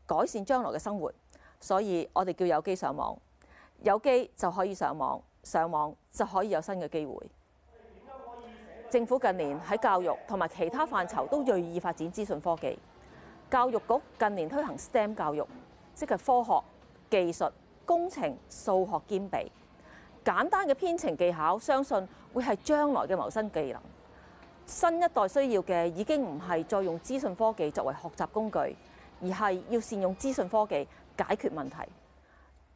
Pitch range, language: 170-250 Hz, Chinese